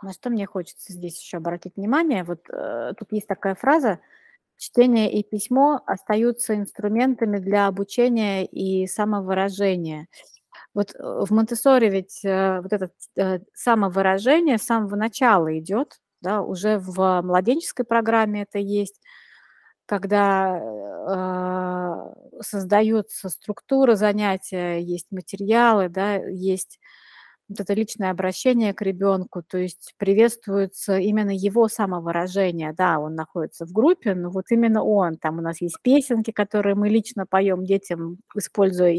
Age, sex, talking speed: 30-49, female, 130 wpm